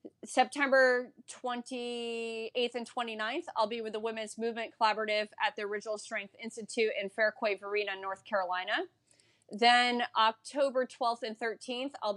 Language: English